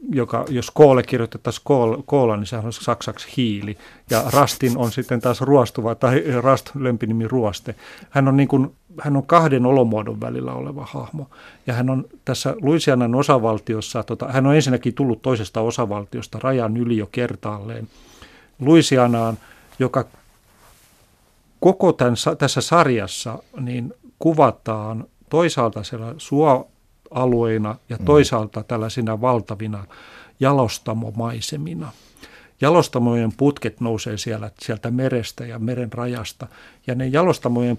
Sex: male